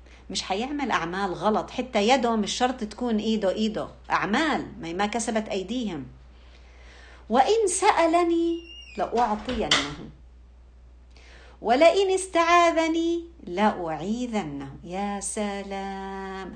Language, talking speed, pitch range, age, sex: Arabic, 85 wpm, 155-220 Hz, 50-69, female